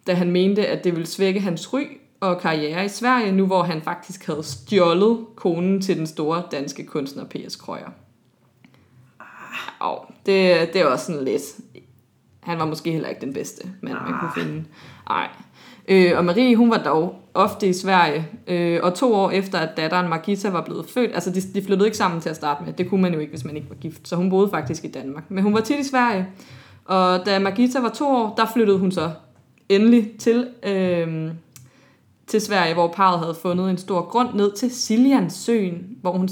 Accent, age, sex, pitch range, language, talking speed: native, 20-39, female, 160-205 Hz, Danish, 200 wpm